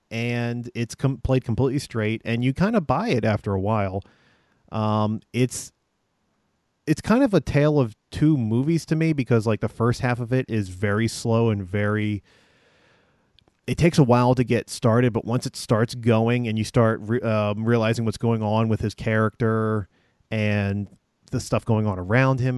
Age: 30-49